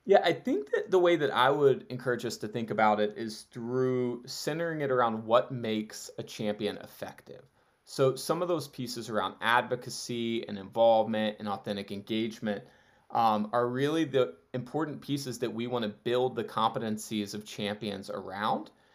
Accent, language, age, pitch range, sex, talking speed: American, English, 30-49, 110-135 Hz, male, 170 wpm